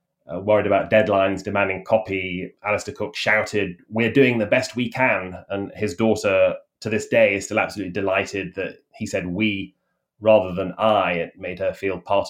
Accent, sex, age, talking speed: British, male, 20-39, 180 wpm